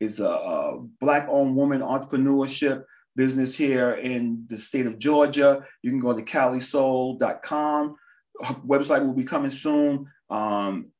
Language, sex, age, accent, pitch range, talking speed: English, male, 30-49, American, 130-160 Hz, 130 wpm